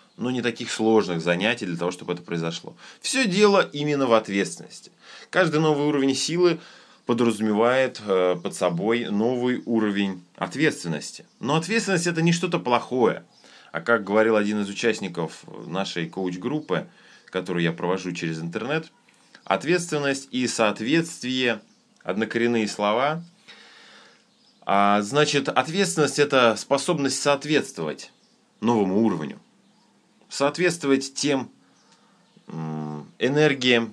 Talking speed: 105 wpm